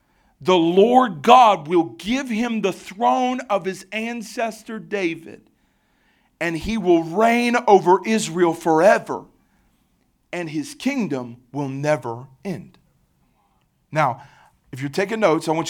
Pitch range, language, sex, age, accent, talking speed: 150-220 Hz, English, male, 40-59, American, 120 wpm